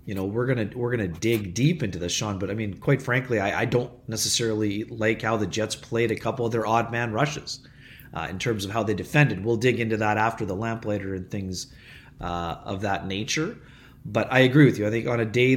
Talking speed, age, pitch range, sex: 240 wpm, 30-49, 110-130 Hz, male